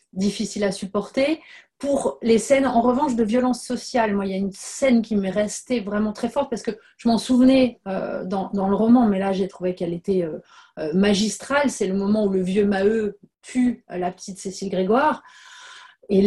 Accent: French